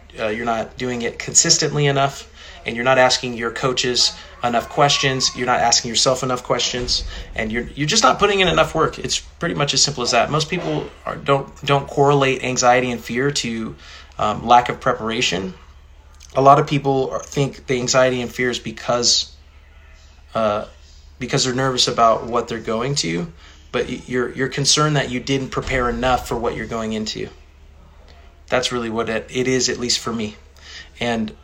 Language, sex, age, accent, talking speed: English, male, 20-39, American, 185 wpm